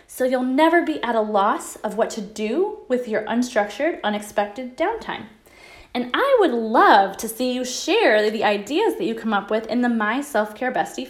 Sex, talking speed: female, 195 wpm